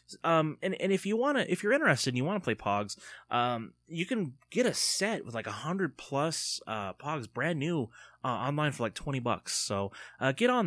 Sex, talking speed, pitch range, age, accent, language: male, 225 wpm, 110-165 Hz, 20-39, American, English